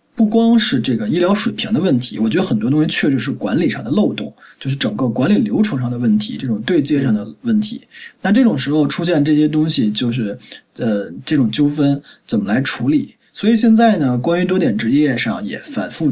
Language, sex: Chinese, male